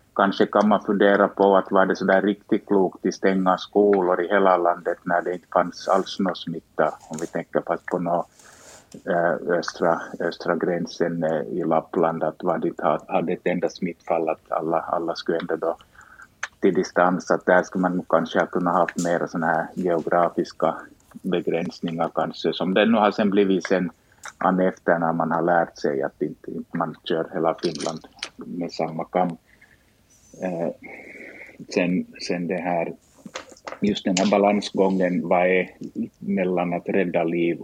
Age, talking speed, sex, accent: 50-69, 155 wpm, male, Finnish